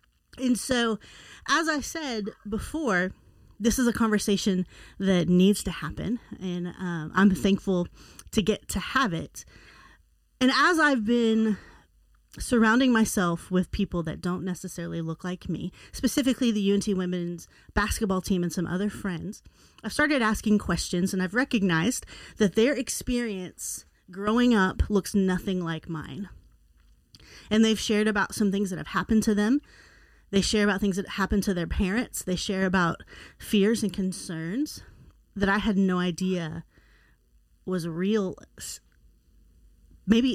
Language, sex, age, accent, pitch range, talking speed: English, female, 30-49, American, 180-220 Hz, 145 wpm